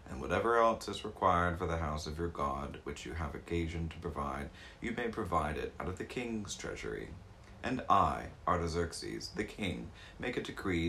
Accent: American